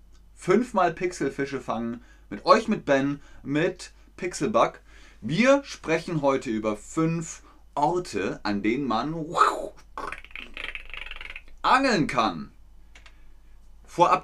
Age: 30-49